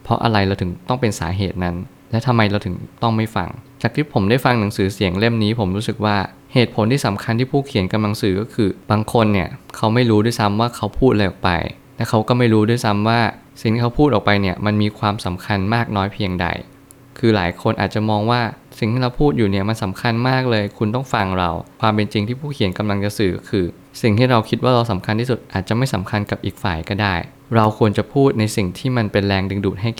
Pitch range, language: 100-120 Hz, Thai